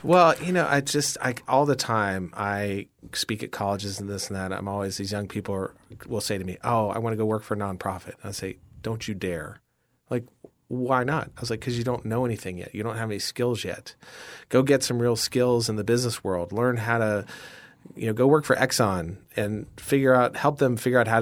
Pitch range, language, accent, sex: 100-120 Hz, English, American, male